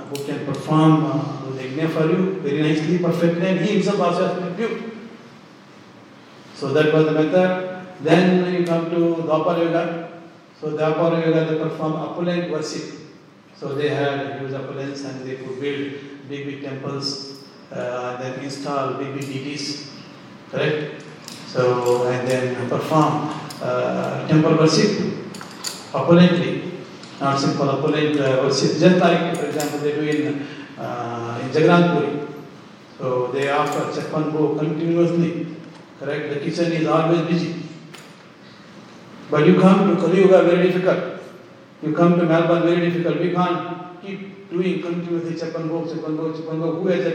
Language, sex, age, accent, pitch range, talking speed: English, male, 60-79, Indian, 145-175 Hz, 135 wpm